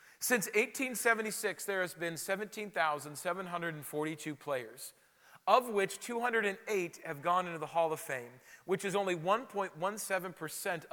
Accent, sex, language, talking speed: American, male, English, 115 wpm